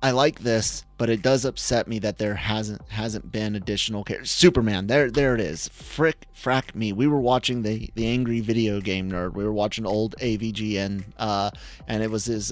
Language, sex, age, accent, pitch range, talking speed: English, male, 30-49, American, 105-125 Hz, 205 wpm